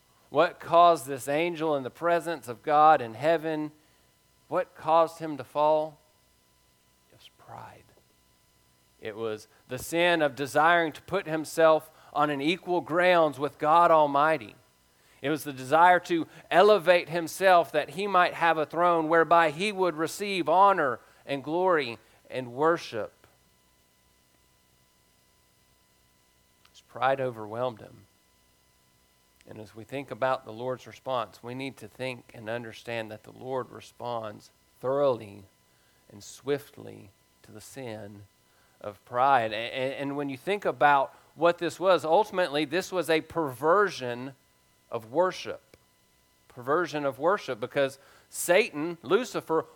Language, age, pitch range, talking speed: English, 40-59, 110-165 Hz, 130 wpm